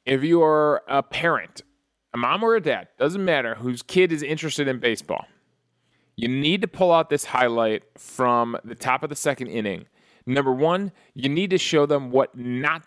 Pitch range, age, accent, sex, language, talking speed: 115-155 Hz, 30-49, American, male, English, 190 wpm